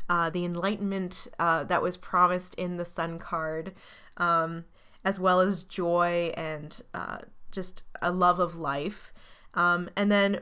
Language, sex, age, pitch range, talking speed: English, female, 20-39, 170-200 Hz, 150 wpm